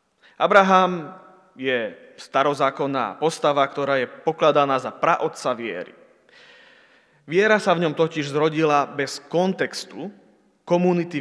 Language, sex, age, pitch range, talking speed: Slovak, male, 30-49, 140-175 Hz, 100 wpm